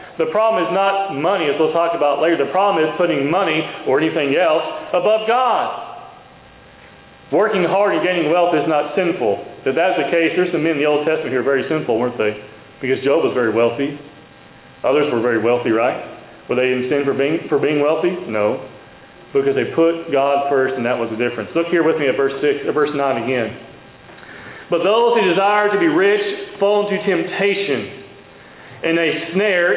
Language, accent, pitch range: English, American, 145-205 Hz